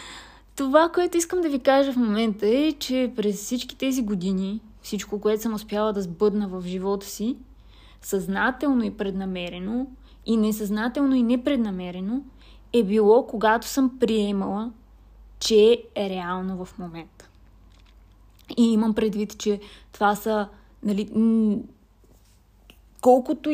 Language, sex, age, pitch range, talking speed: Bulgarian, female, 20-39, 205-250 Hz, 120 wpm